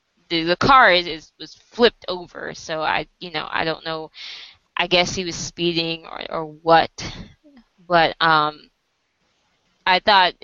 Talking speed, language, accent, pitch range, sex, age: 150 wpm, English, American, 160-185 Hz, female, 20-39